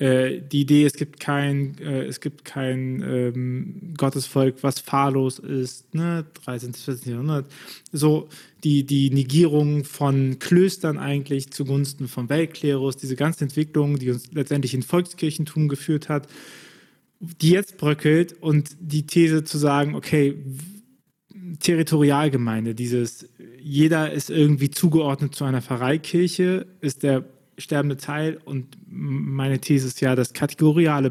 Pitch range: 130-155 Hz